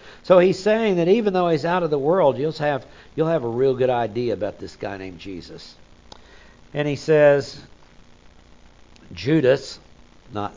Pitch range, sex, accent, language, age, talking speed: 125-175 Hz, male, American, English, 60-79, 160 wpm